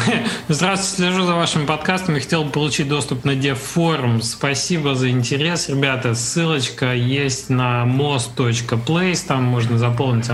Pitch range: 125-170 Hz